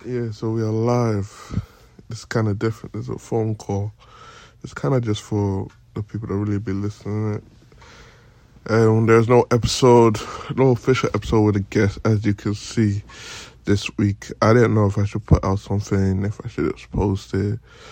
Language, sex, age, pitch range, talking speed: English, male, 20-39, 100-115 Hz, 185 wpm